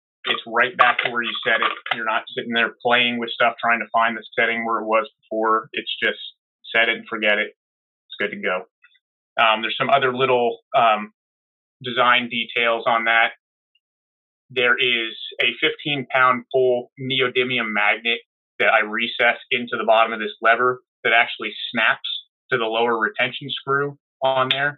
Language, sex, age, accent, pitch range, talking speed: English, male, 30-49, American, 110-125 Hz, 170 wpm